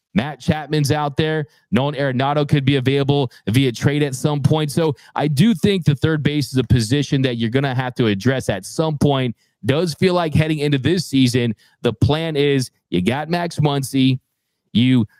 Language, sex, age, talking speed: English, male, 30-49, 195 wpm